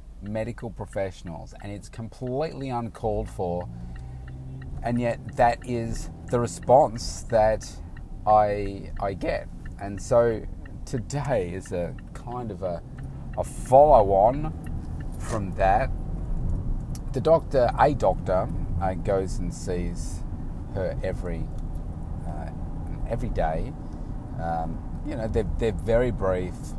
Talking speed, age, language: 115 wpm, 30-49, English